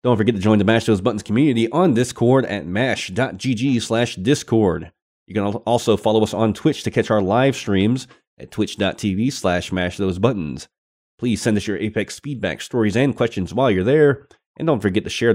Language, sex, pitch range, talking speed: English, male, 95-120 Hz, 190 wpm